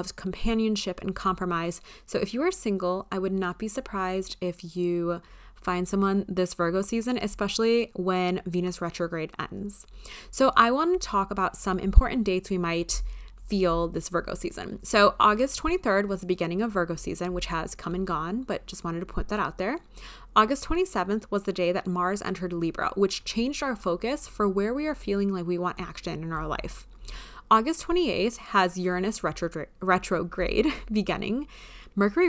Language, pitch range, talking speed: English, 180-215 Hz, 175 wpm